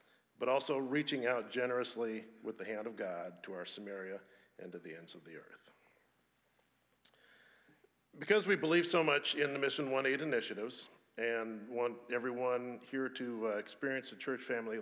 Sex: male